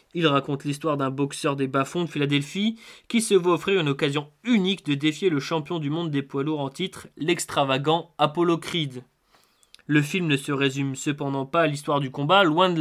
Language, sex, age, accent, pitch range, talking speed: French, male, 20-39, French, 140-170 Hz, 200 wpm